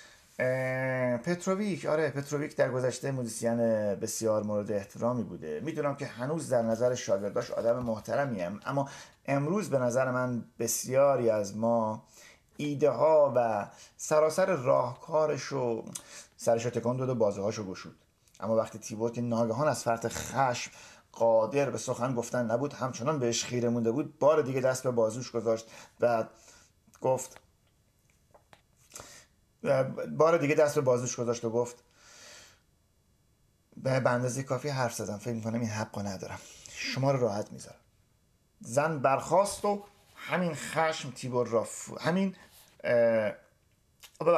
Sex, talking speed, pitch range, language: male, 120 wpm, 115-150 Hz, Persian